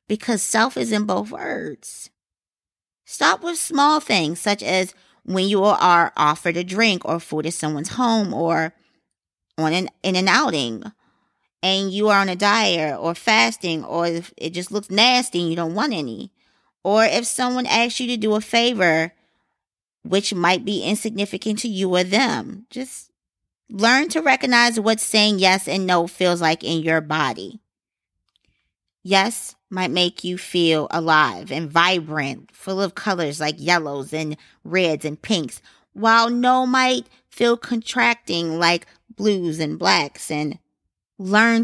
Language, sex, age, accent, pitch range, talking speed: English, female, 20-39, American, 165-215 Hz, 155 wpm